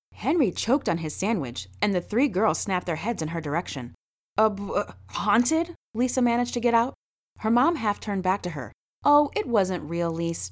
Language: English